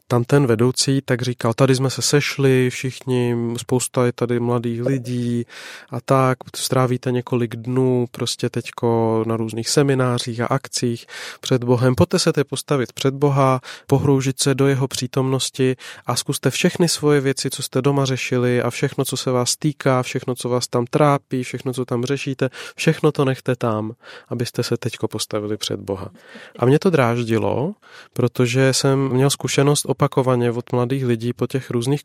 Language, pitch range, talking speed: Czech, 120-135 Hz, 165 wpm